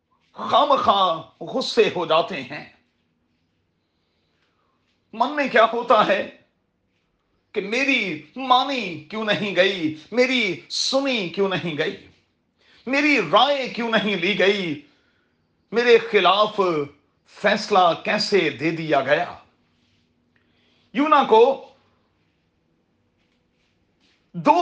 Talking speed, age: 95 wpm, 40-59